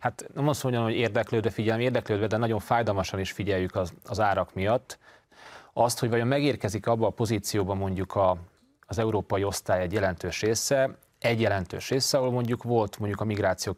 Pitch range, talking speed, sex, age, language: 95-120 Hz, 180 wpm, male, 30-49, Hungarian